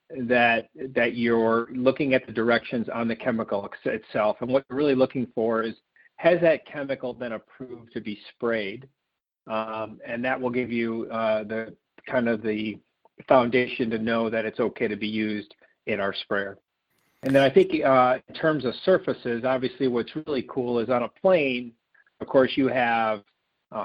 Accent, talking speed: American, 180 wpm